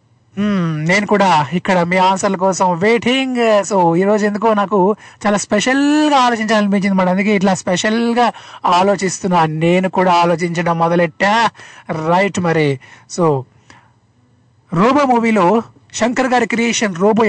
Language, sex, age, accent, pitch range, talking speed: Telugu, male, 20-39, native, 180-230 Hz, 110 wpm